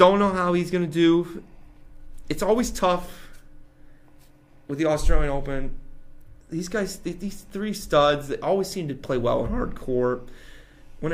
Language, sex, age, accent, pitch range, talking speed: English, male, 30-49, American, 135-170 Hz, 155 wpm